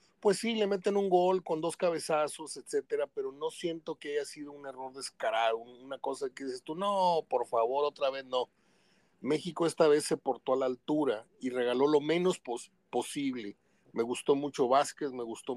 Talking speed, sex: 195 wpm, male